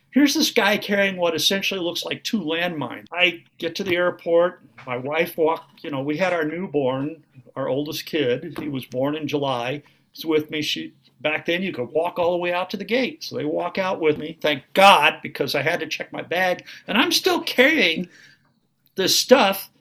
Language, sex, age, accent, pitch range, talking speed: English, male, 50-69, American, 150-190 Hz, 210 wpm